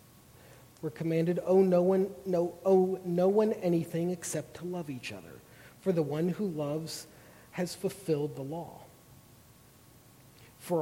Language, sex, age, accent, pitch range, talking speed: English, male, 40-59, American, 140-180 Hz, 145 wpm